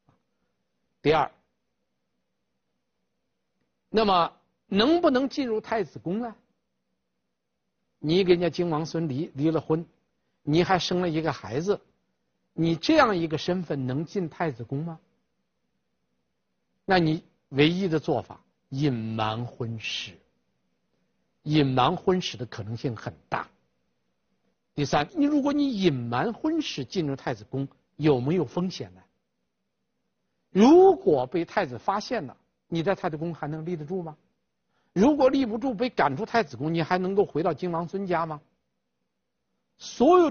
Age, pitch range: 50-69, 130-195 Hz